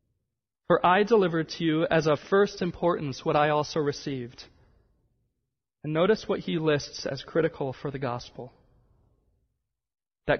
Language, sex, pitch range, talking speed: English, male, 125-160 Hz, 140 wpm